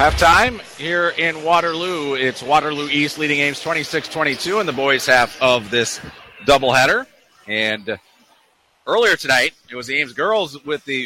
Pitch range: 120-150 Hz